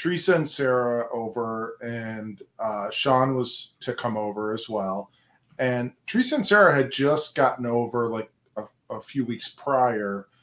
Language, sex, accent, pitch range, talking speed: English, male, American, 115-145 Hz, 155 wpm